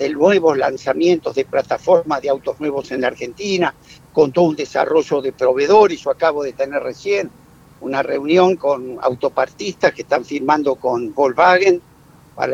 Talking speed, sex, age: 155 wpm, male, 60-79